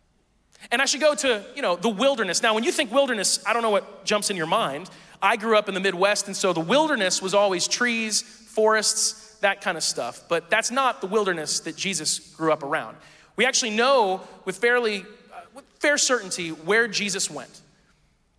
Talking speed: 200 wpm